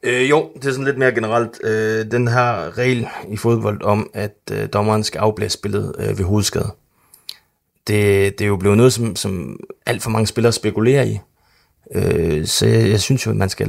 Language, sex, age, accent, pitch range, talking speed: Danish, male, 30-49, native, 100-120 Hz, 200 wpm